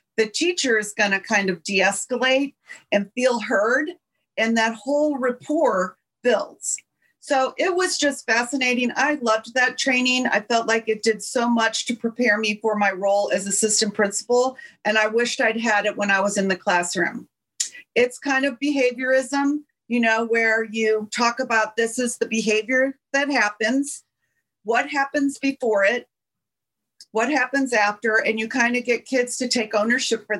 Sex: female